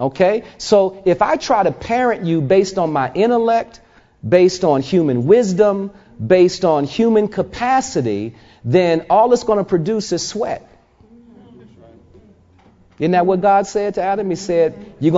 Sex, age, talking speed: male, 40-59, 150 wpm